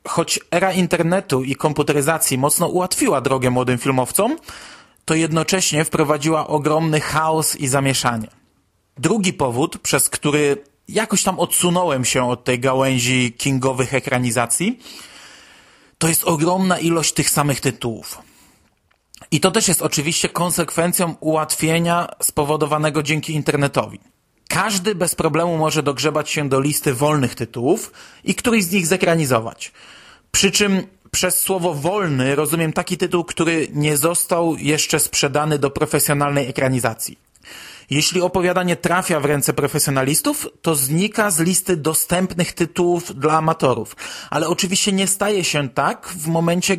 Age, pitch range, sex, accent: 30-49, 145-175 Hz, male, native